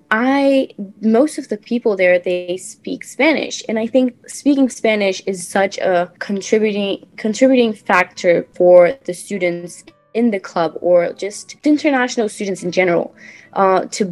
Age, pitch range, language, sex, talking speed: 20-39, 180-220 Hz, English, female, 145 wpm